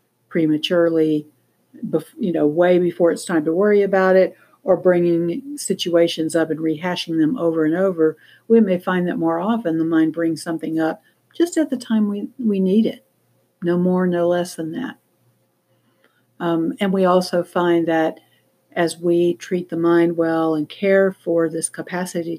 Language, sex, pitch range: English, female, 160-195 Hz